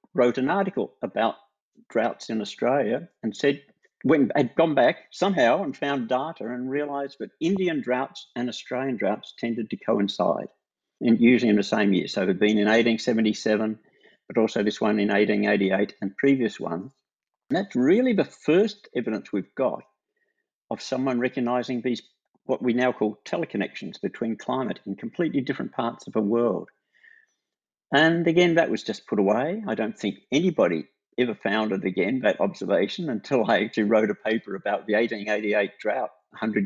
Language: English